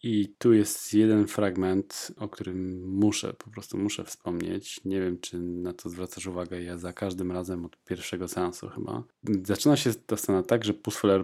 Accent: native